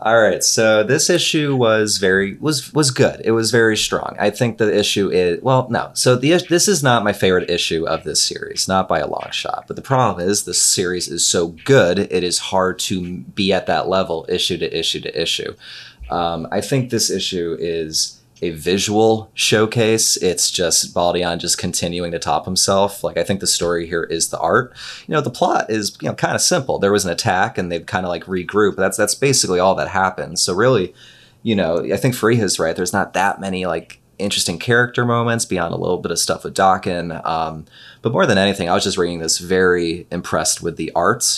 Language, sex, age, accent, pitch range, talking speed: English, male, 30-49, American, 90-115 Hz, 220 wpm